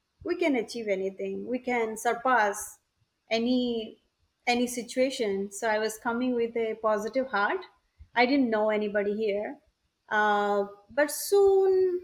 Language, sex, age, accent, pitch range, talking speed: English, female, 30-49, Indian, 210-255 Hz, 130 wpm